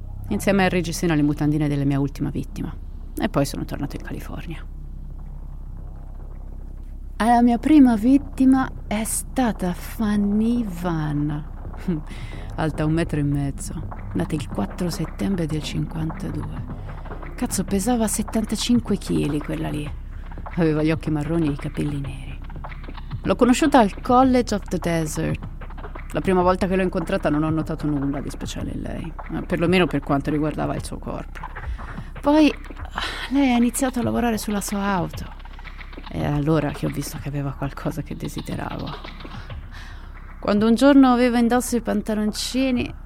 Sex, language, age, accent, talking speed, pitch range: female, Italian, 30-49, native, 140 wpm, 140-205 Hz